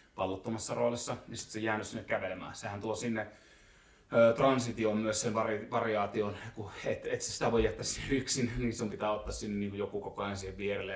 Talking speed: 190 wpm